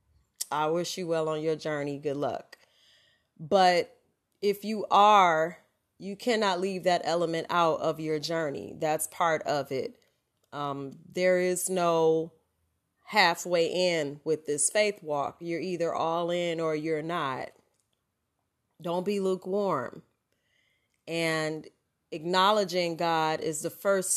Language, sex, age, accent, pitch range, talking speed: English, female, 30-49, American, 160-200 Hz, 130 wpm